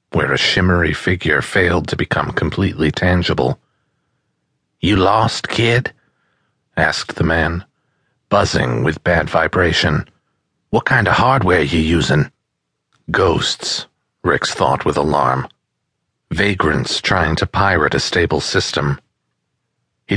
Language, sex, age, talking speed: English, male, 40-59, 115 wpm